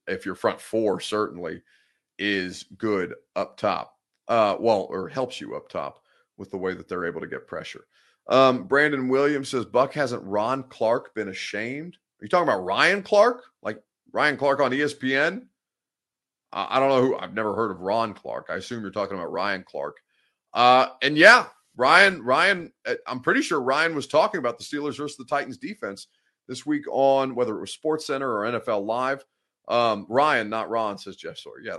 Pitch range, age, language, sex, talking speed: 115-150 Hz, 30-49, English, male, 190 wpm